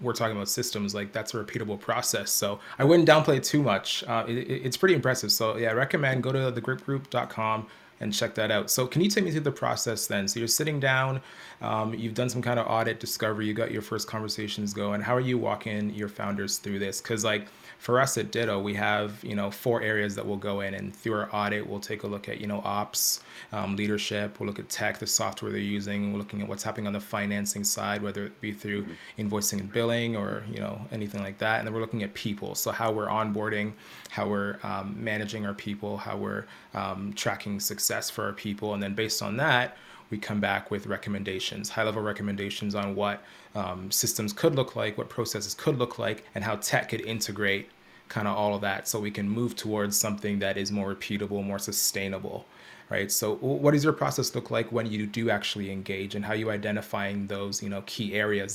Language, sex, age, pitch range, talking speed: English, male, 20-39, 100-115 Hz, 225 wpm